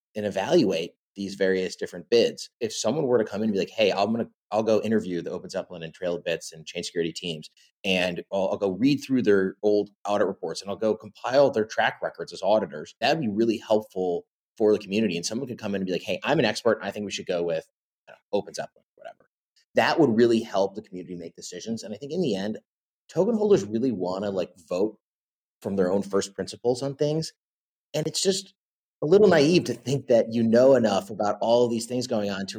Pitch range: 95-120 Hz